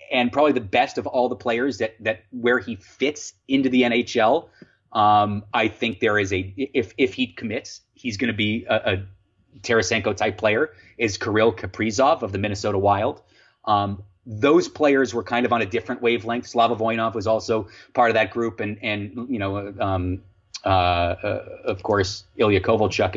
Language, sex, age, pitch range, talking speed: English, male, 30-49, 100-130 Hz, 185 wpm